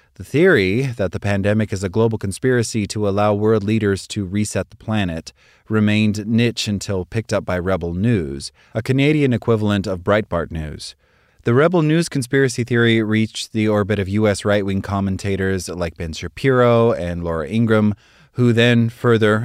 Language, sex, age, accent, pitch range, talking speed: English, male, 30-49, American, 95-120 Hz, 160 wpm